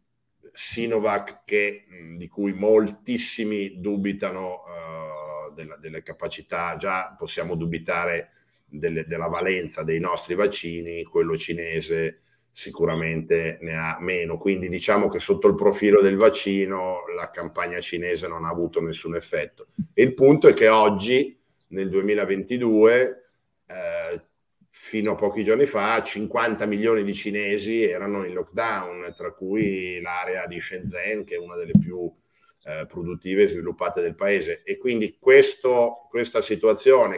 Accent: native